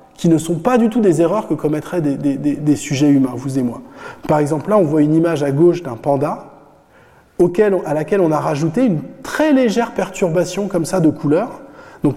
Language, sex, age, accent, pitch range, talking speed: French, male, 20-39, French, 150-210 Hz, 225 wpm